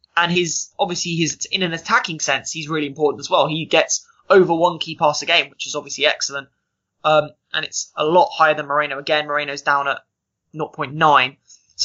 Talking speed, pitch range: 210 wpm, 150-180 Hz